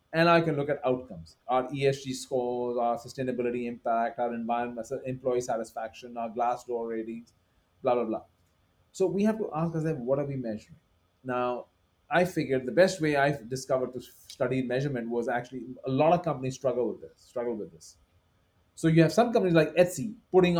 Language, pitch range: English, 120-165 Hz